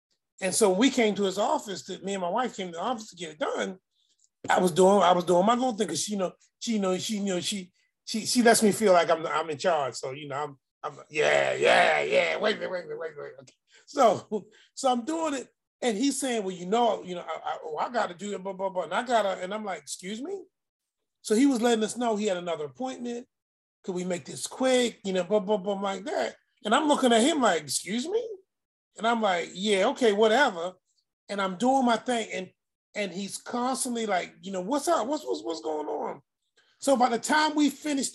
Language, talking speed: English, 250 wpm